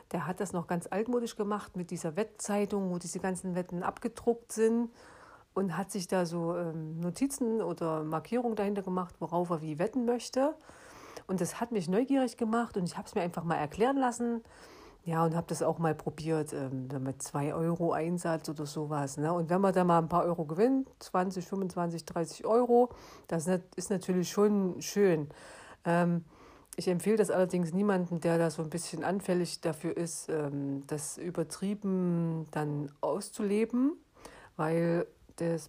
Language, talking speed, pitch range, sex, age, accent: German, 160 wpm, 160-195 Hz, female, 50-69, German